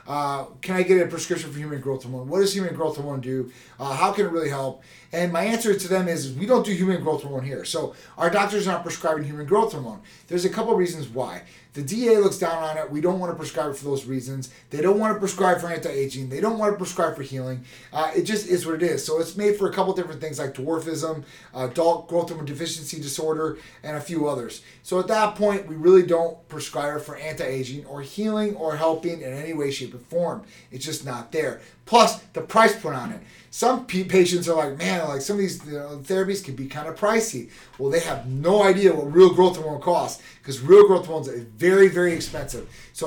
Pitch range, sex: 140-185 Hz, male